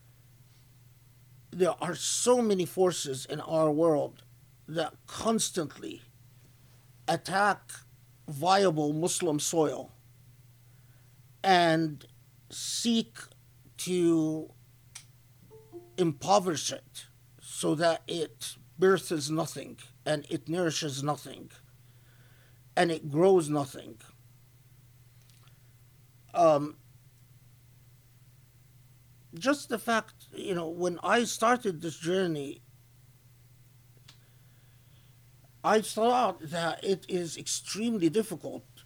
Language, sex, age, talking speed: English, male, 50-69, 75 wpm